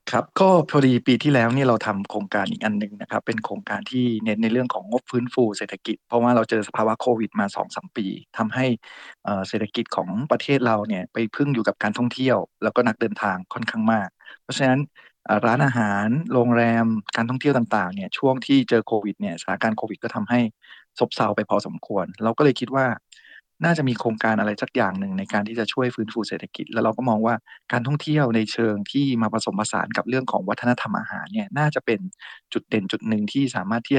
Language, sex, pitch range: Thai, male, 110-130 Hz